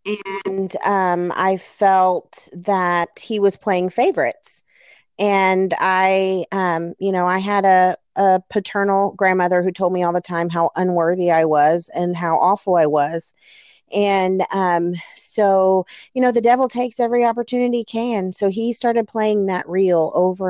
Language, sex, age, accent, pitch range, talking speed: English, female, 30-49, American, 175-200 Hz, 155 wpm